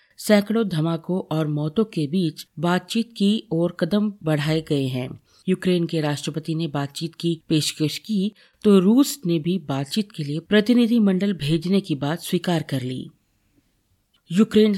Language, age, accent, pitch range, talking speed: Hindi, 40-59, native, 155-190 Hz, 145 wpm